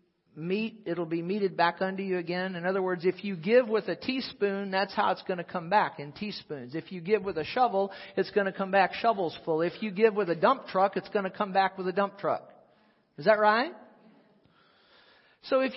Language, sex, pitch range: English, male, 185-230 Hz